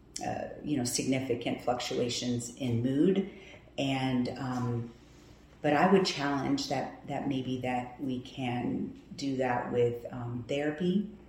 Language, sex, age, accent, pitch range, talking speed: English, female, 40-59, American, 125-150 Hz, 130 wpm